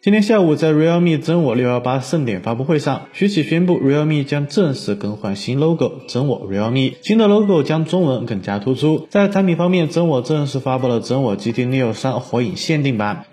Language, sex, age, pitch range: Chinese, male, 30-49, 125-180 Hz